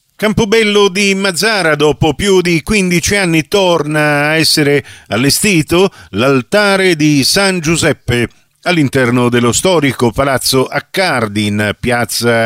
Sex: male